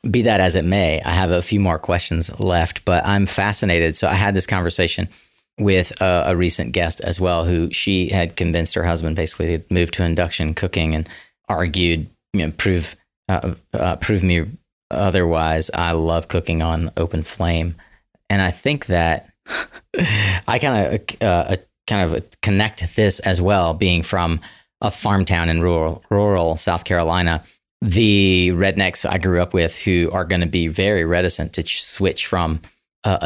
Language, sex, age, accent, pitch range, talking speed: English, male, 30-49, American, 85-100 Hz, 175 wpm